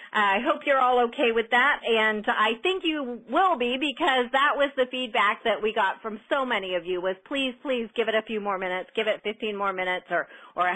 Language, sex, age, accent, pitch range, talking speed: English, female, 40-59, American, 215-275 Hz, 240 wpm